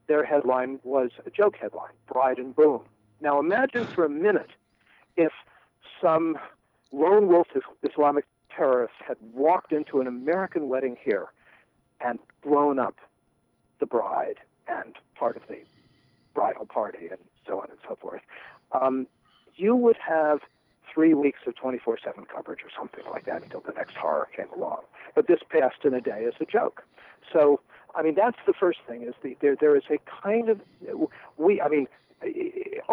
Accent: American